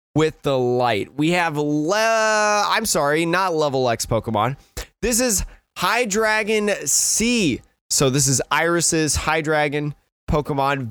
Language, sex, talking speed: English, male, 130 wpm